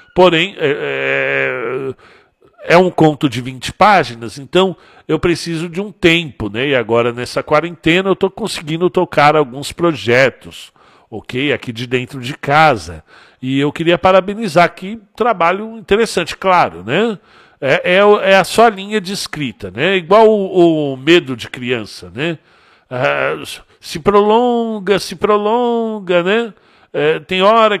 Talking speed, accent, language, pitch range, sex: 135 wpm, Brazilian, Portuguese, 130-190 Hz, male